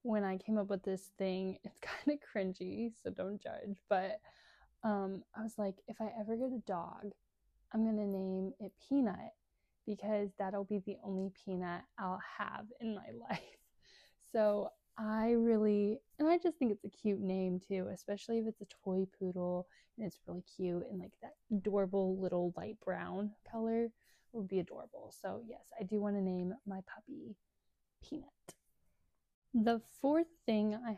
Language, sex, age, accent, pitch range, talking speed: English, female, 20-39, American, 190-230 Hz, 170 wpm